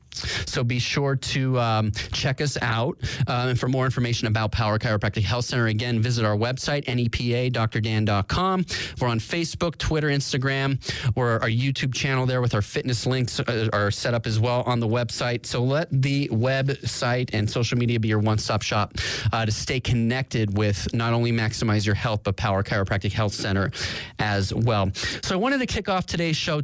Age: 30-49